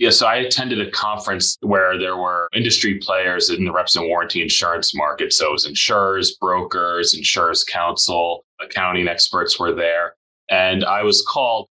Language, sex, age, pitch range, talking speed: English, male, 20-39, 85-100 Hz, 170 wpm